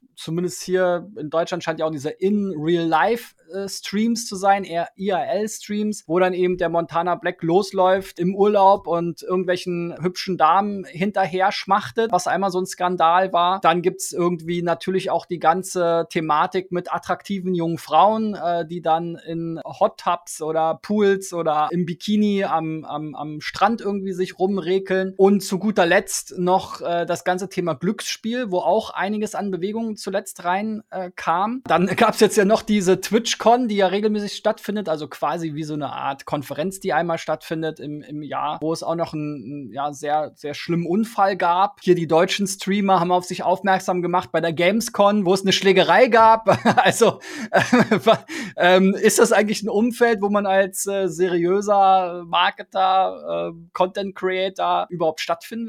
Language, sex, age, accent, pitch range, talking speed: German, male, 20-39, German, 170-200 Hz, 165 wpm